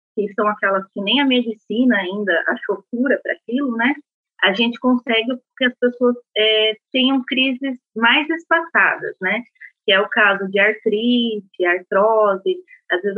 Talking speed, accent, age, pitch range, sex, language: 155 wpm, Brazilian, 20-39, 205-255 Hz, female, Portuguese